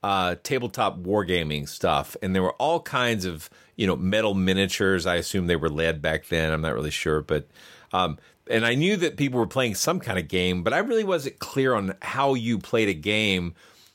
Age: 40-59